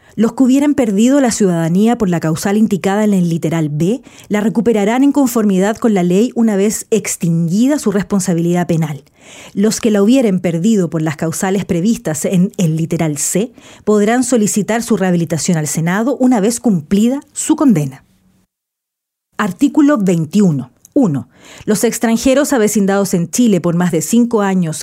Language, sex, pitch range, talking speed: Spanish, female, 175-230 Hz, 155 wpm